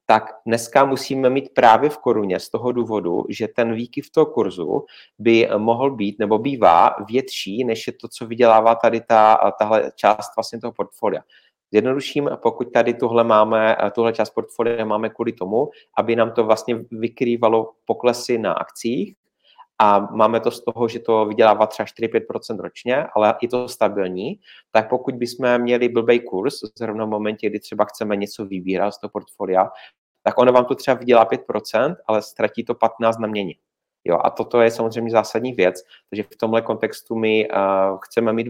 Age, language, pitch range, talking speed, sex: 30-49, Czech, 110-120 Hz, 170 wpm, male